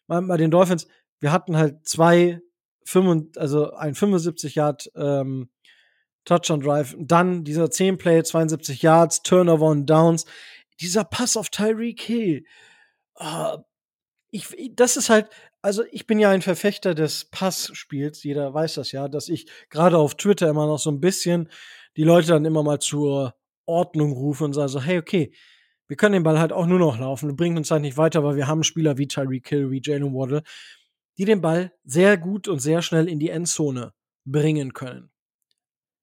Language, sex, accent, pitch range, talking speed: German, male, German, 150-190 Hz, 165 wpm